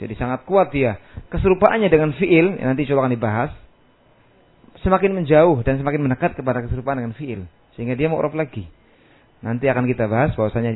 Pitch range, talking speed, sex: 120-160 Hz, 160 wpm, male